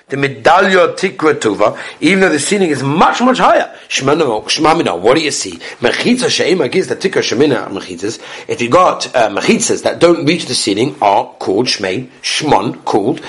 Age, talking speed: 60-79, 175 wpm